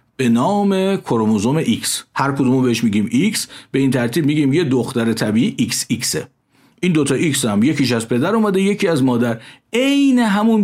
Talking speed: 170 wpm